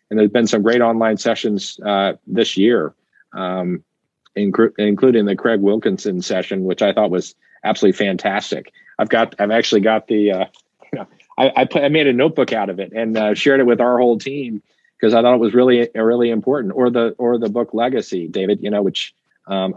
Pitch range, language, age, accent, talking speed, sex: 95-115 Hz, English, 40-59, American, 210 wpm, male